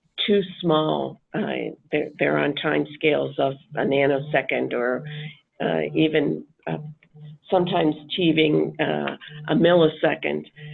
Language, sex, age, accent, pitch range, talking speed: English, female, 50-69, American, 150-175 Hz, 110 wpm